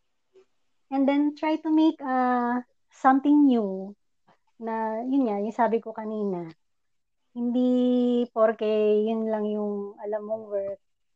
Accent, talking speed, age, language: native, 125 wpm, 20-39, Filipino